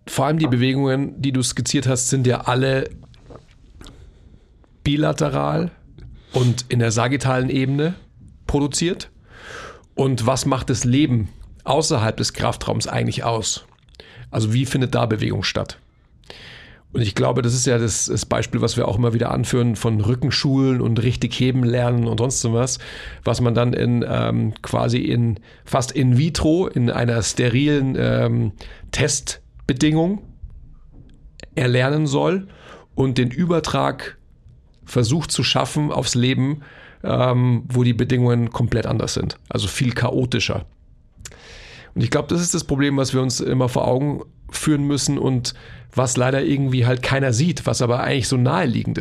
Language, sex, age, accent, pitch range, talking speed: German, male, 40-59, German, 120-135 Hz, 145 wpm